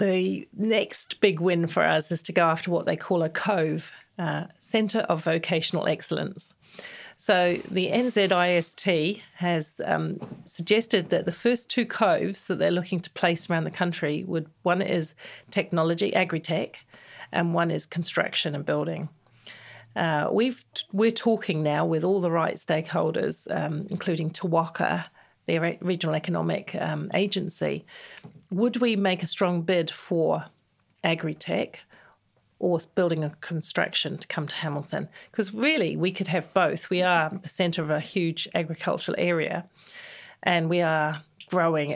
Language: English